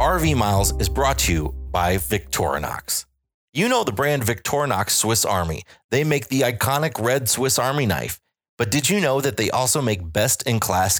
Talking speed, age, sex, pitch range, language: 175 wpm, 30-49, male, 100-140 Hz, English